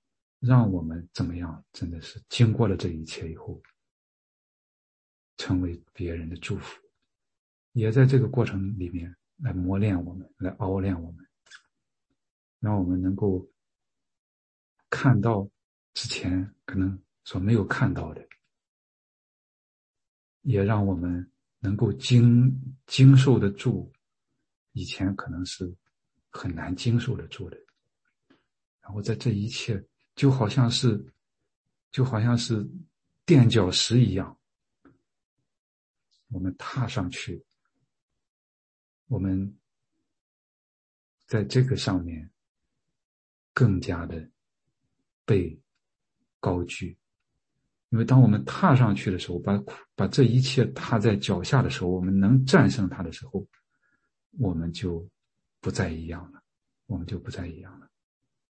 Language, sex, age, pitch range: English, male, 50-69, 90-120 Hz